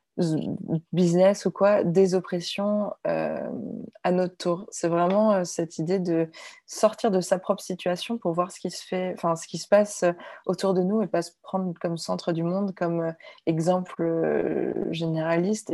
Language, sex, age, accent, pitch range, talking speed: French, female, 20-39, French, 165-200 Hz, 175 wpm